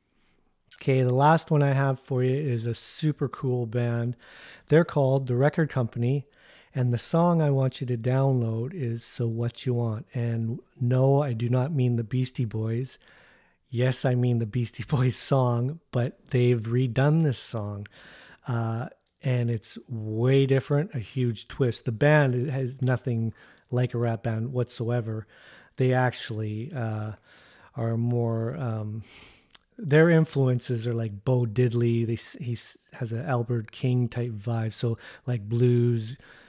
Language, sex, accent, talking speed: English, male, American, 150 wpm